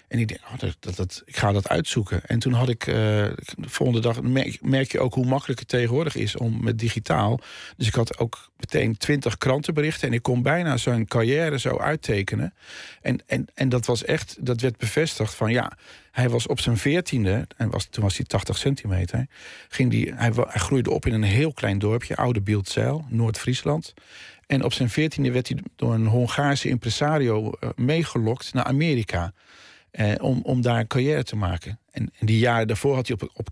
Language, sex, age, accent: Dutch, male, 50-69, Dutch